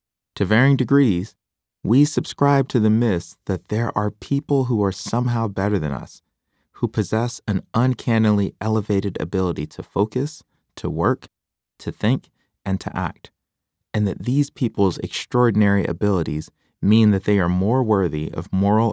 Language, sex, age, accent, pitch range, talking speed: English, male, 30-49, American, 95-120 Hz, 150 wpm